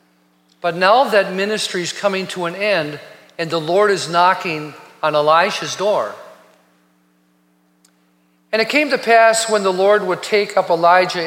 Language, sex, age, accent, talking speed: English, male, 50-69, American, 155 wpm